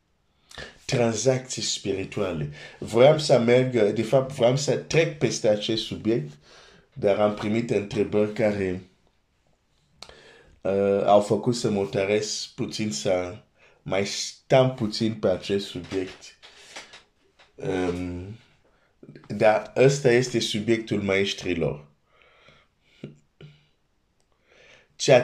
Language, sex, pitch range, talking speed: Romanian, male, 100-125 Hz, 95 wpm